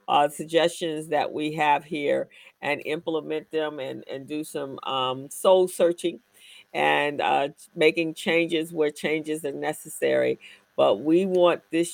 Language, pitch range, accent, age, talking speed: English, 135-175 Hz, American, 50-69, 140 wpm